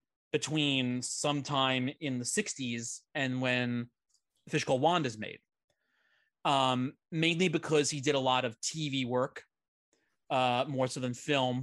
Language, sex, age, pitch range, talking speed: English, male, 30-49, 125-160 Hz, 140 wpm